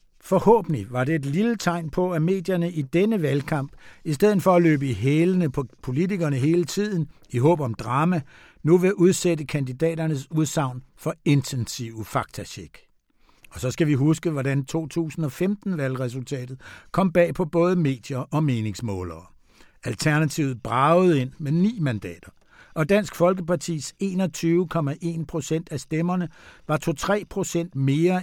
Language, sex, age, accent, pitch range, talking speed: Danish, male, 60-79, native, 130-175 Hz, 140 wpm